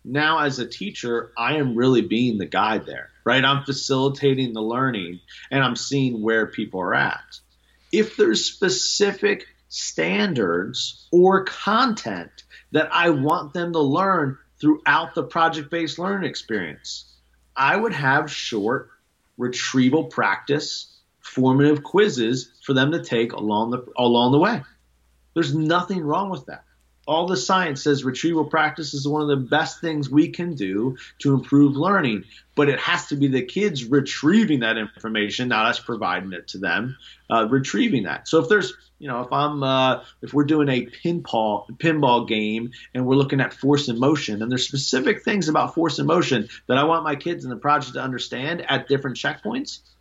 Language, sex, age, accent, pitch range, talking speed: English, male, 30-49, American, 120-160 Hz, 170 wpm